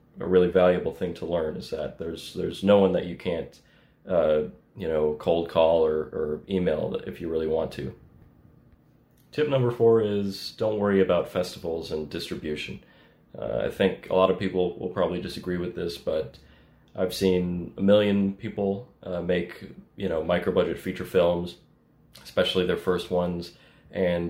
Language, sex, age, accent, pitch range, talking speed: English, male, 30-49, American, 85-95 Hz, 170 wpm